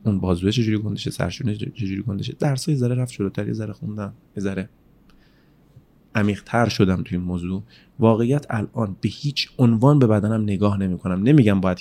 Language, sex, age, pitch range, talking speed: Persian, male, 30-49, 100-120 Hz, 160 wpm